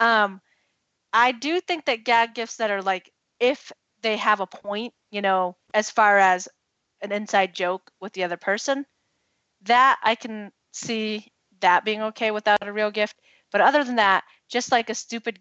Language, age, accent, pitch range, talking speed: English, 30-49, American, 190-240 Hz, 180 wpm